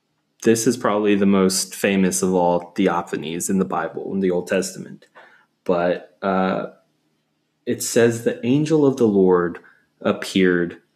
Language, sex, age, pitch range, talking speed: English, male, 20-39, 95-110 Hz, 140 wpm